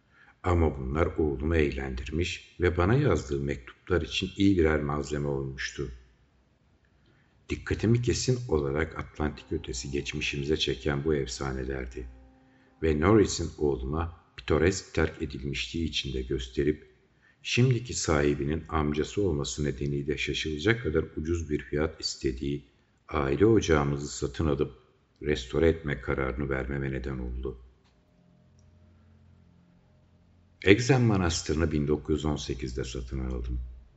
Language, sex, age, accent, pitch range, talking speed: Turkish, male, 60-79, native, 65-85 Hz, 100 wpm